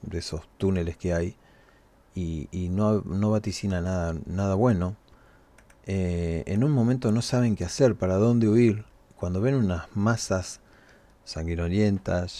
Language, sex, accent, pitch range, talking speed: Spanish, male, Argentinian, 90-110 Hz, 140 wpm